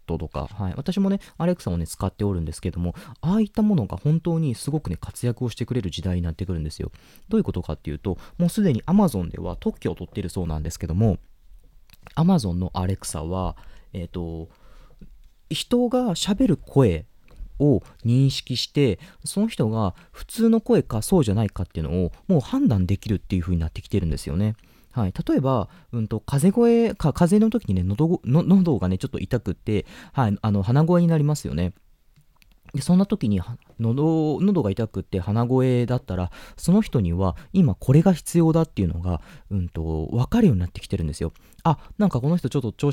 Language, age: Japanese, 20-39